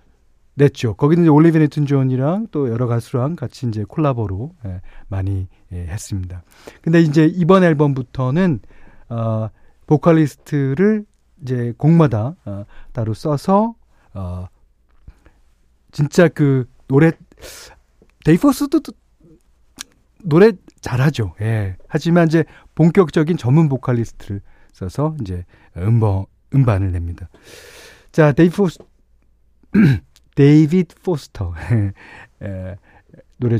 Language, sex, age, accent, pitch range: Korean, male, 40-59, native, 95-155 Hz